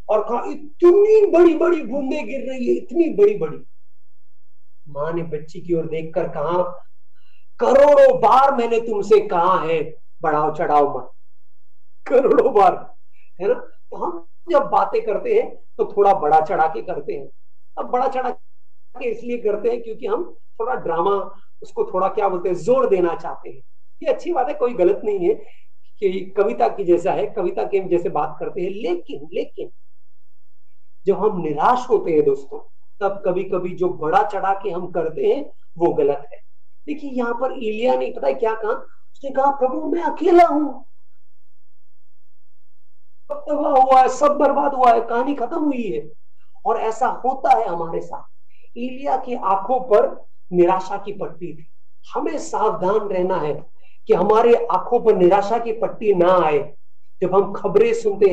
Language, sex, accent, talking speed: English, male, Indian, 150 wpm